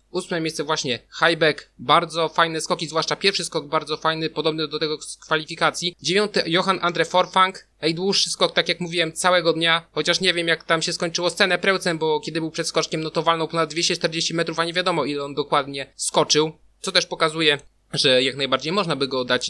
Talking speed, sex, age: 195 wpm, male, 20-39